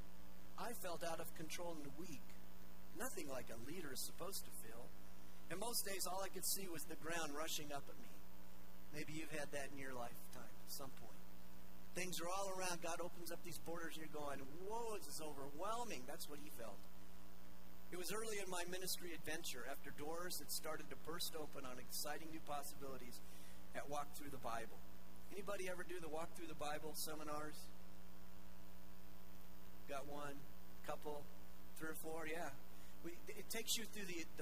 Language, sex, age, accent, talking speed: English, male, 50-69, American, 185 wpm